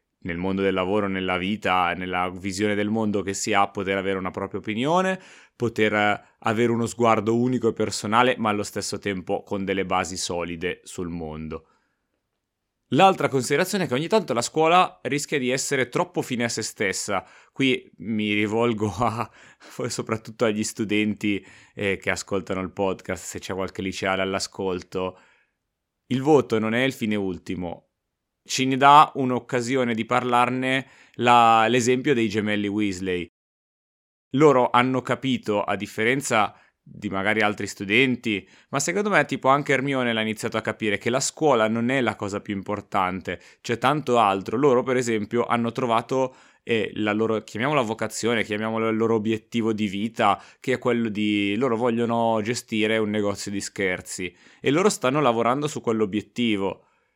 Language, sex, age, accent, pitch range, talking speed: Italian, male, 30-49, native, 100-125 Hz, 155 wpm